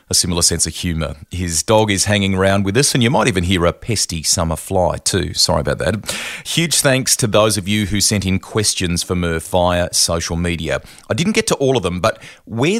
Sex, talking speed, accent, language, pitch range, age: male, 230 wpm, Australian, English, 90-115 Hz, 40-59